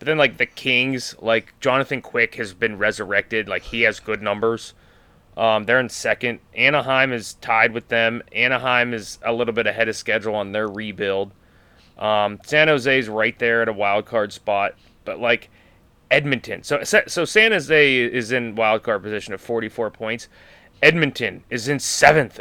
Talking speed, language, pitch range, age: 175 wpm, English, 100-125 Hz, 20-39